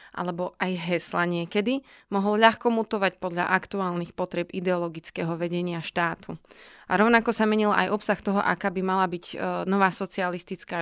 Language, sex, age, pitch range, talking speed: Slovak, female, 20-39, 180-205 Hz, 145 wpm